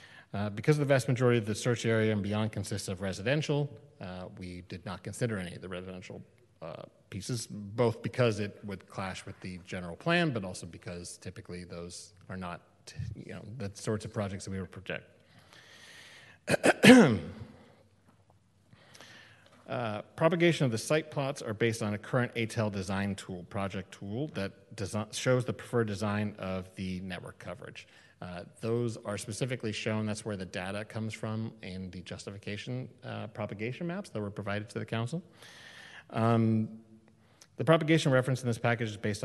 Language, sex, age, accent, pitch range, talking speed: English, male, 30-49, American, 100-120 Hz, 170 wpm